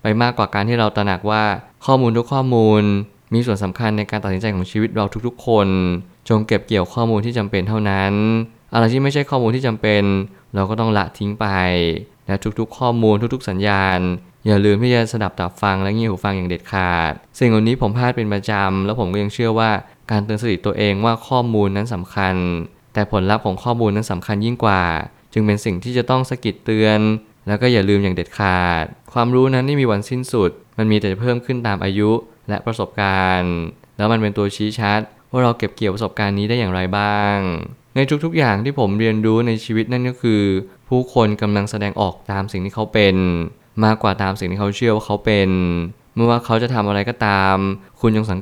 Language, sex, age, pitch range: Thai, male, 20-39, 100-115 Hz